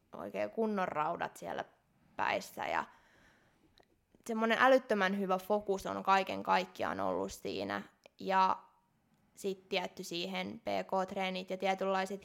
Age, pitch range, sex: 20-39, 180-210 Hz, female